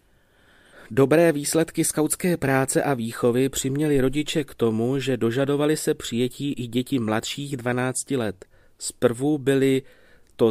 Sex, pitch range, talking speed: male, 105-130 Hz, 125 wpm